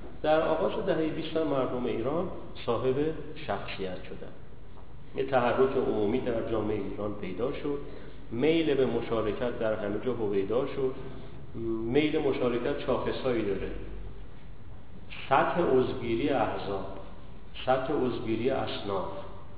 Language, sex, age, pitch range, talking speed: Persian, male, 40-59, 110-145 Hz, 115 wpm